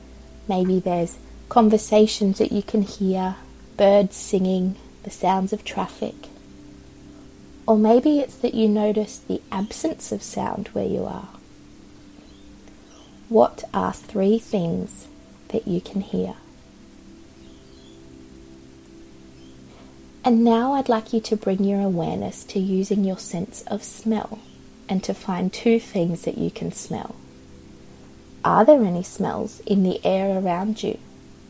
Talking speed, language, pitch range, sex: 130 wpm, English, 145-215 Hz, female